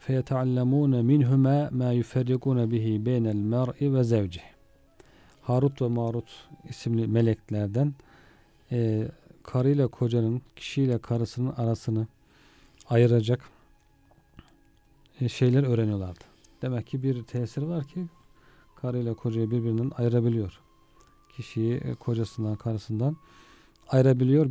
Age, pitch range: 40-59, 115-135 Hz